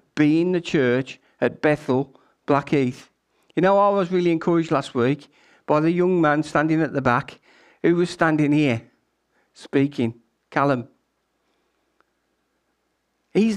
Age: 50-69